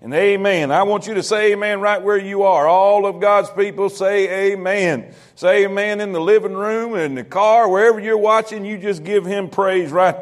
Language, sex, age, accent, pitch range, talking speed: English, male, 50-69, American, 200-245 Hz, 210 wpm